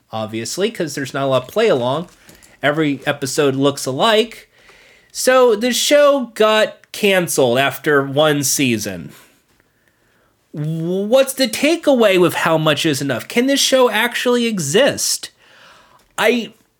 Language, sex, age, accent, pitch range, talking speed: English, male, 30-49, American, 150-210 Hz, 120 wpm